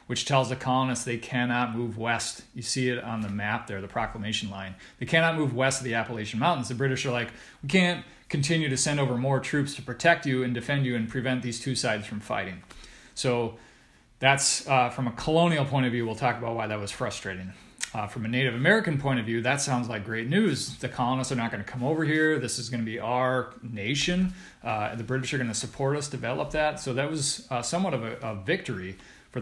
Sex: male